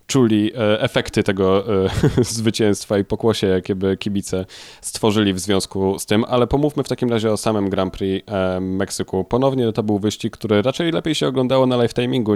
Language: Polish